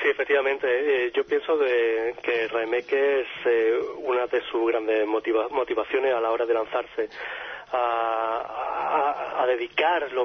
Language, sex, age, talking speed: Spanish, male, 30-49, 150 wpm